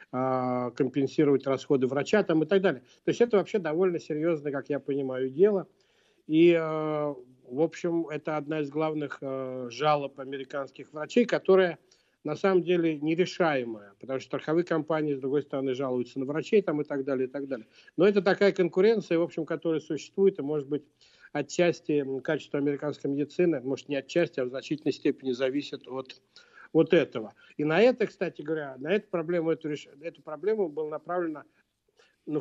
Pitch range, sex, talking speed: 135-170 Hz, male, 170 wpm